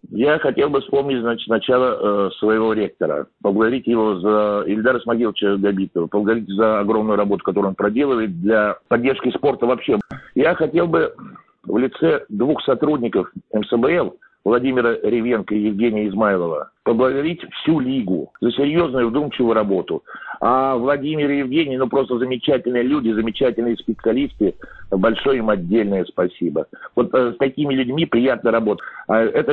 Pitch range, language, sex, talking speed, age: 105-135 Hz, Russian, male, 135 wpm, 50-69